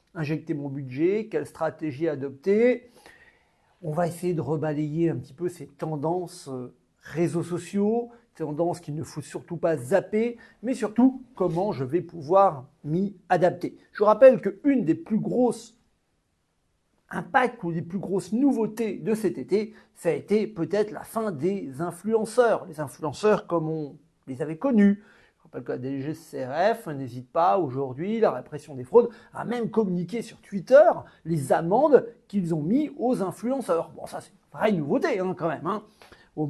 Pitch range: 160-215 Hz